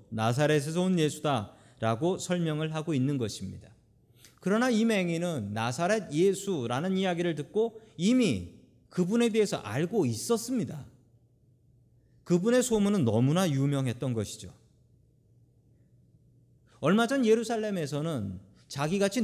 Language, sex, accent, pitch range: Korean, male, native, 120-195 Hz